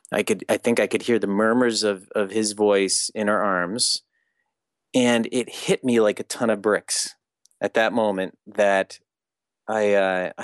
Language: English